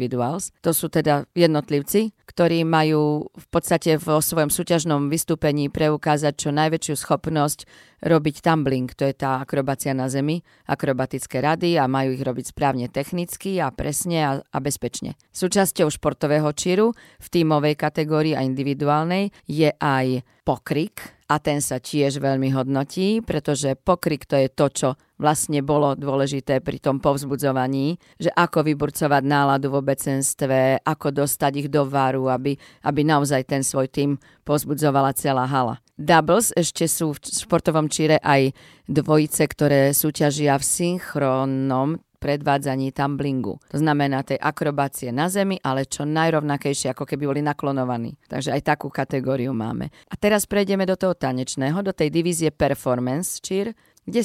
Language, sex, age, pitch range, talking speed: Slovak, female, 40-59, 135-160 Hz, 145 wpm